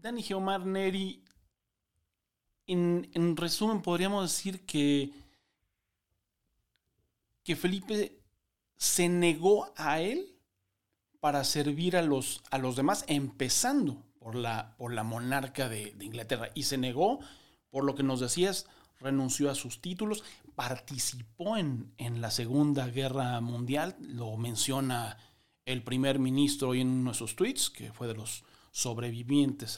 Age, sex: 40-59, male